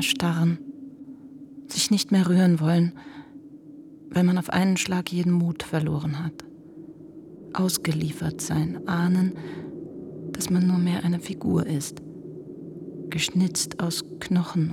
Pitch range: 165-220 Hz